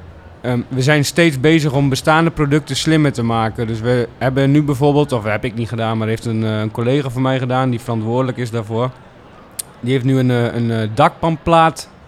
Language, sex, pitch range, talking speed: Dutch, male, 120-150 Hz, 190 wpm